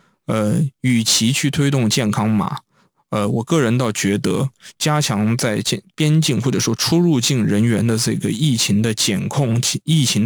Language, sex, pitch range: Chinese, male, 115-150 Hz